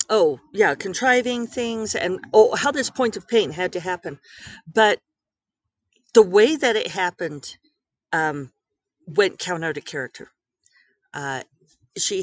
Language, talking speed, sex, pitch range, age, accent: English, 135 wpm, female, 150-230 Hz, 50-69, American